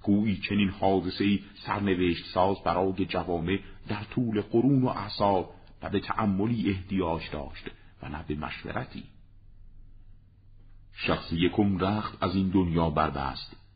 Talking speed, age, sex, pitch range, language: 120 wpm, 50-69, male, 80-100 Hz, Persian